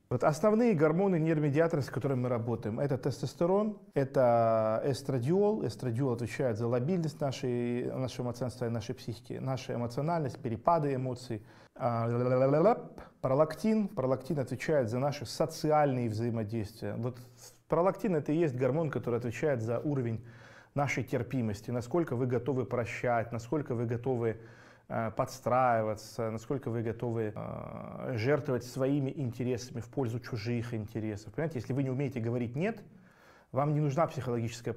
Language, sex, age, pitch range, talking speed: Russian, male, 20-39, 115-145 Hz, 130 wpm